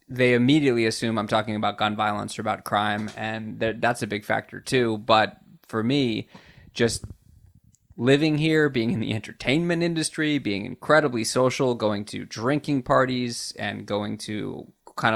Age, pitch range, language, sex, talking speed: 20-39, 110-130 Hz, English, male, 155 wpm